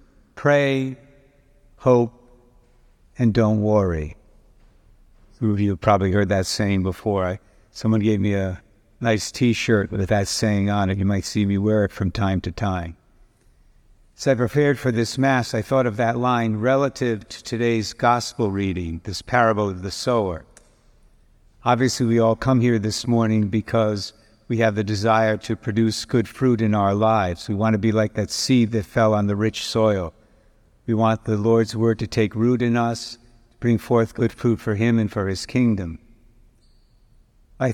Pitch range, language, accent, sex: 105-120 Hz, English, American, male